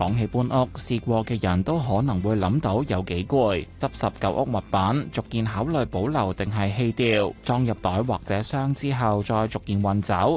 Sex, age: male, 20-39